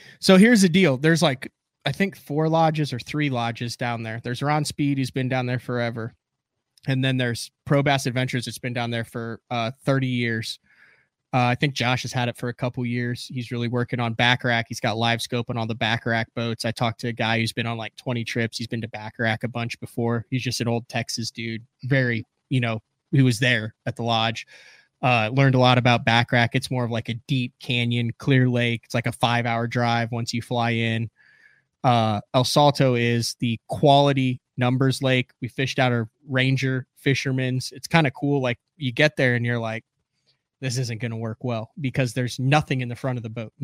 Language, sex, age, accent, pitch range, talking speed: English, male, 20-39, American, 120-140 Hz, 220 wpm